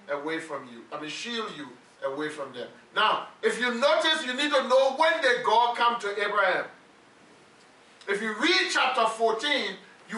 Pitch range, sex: 195-270 Hz, male